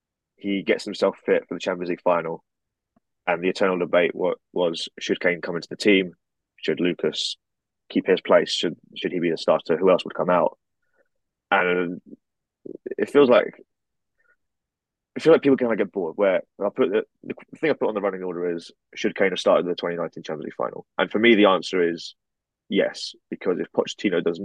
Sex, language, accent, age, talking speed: male, English, British, 20-39, 205 wpm